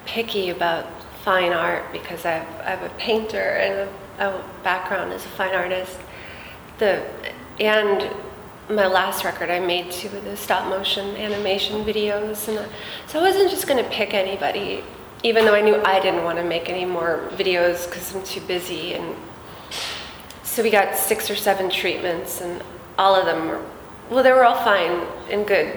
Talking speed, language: 180 wpm, English